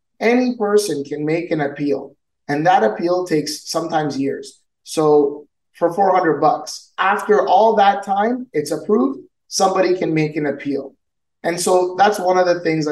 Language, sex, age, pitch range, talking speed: English, male, 20-39, 140-170 Hz, 160 wpm